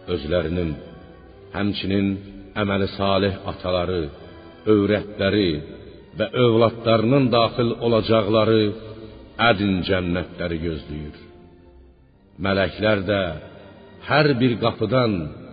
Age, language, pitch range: 60-79, Persian, 95-120 Hz